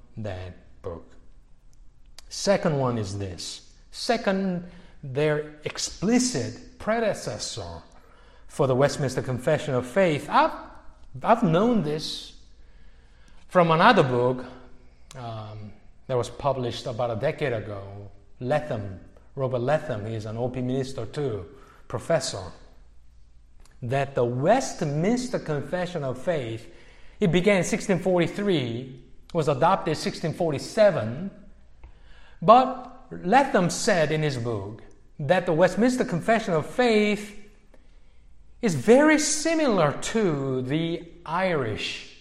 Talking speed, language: 100 wpm, English